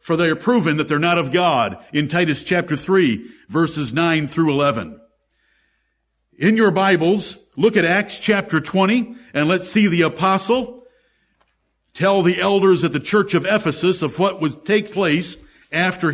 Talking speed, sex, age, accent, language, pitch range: 165 wpm, male, 60-79, American, English, 160-205 Hz